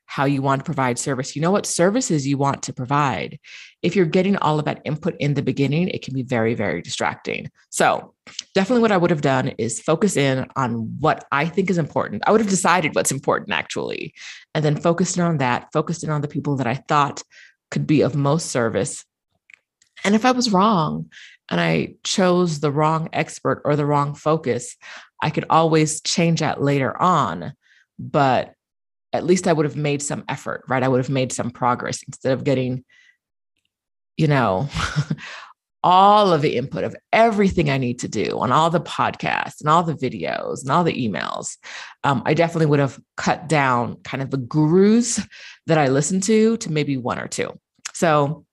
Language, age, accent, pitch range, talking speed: English, 30-49, American, 135-175 Hz, 195 wpm